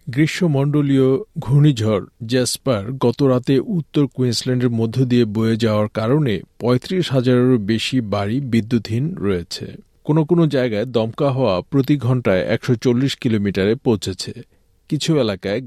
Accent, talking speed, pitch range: native, 110 wpm, 110-135 Hz